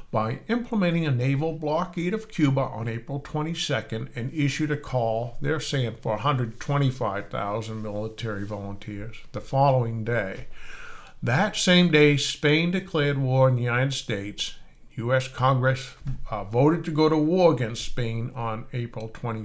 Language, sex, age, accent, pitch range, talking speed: English, male, 60-79, American, 115-150 Hz, 140 wpm